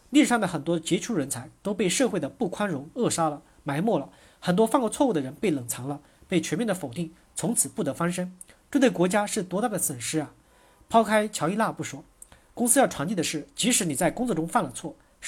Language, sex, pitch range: Chinese, male, 155-220 Hz